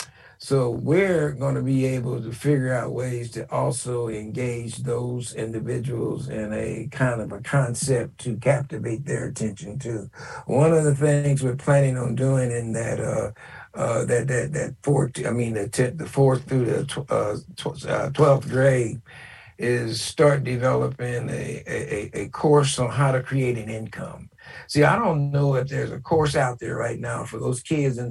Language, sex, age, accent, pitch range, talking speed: English, male, 60-79, American, 120-140 Hz, 180 wpm